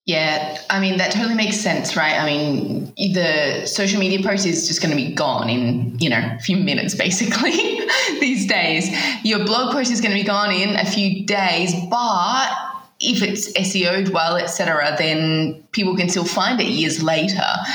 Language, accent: English, Australian